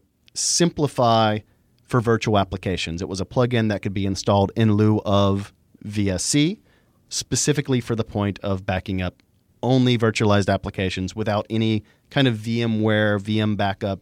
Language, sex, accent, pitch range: English, male, American, 100-130 Hz